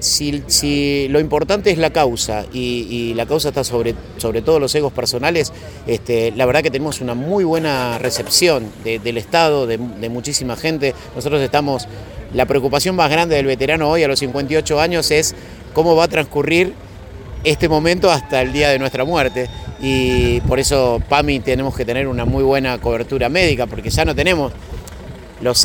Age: 30-49